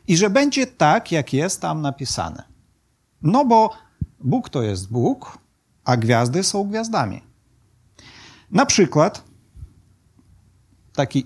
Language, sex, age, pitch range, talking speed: Polish, male, 40-59, 125-200 Hz, 110 wpm